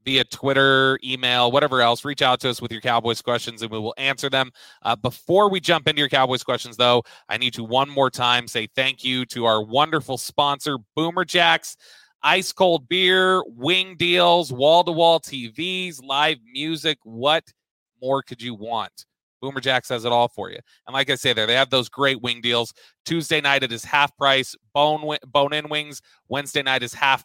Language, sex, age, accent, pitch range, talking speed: English, male, 30-49, American, 120-150 Hz, 190 wpm